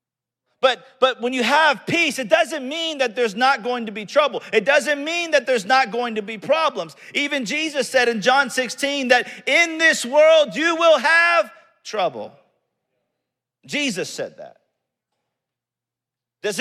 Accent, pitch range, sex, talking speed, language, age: American, 175-270 Hz, male, 160 wpm, English, 40-59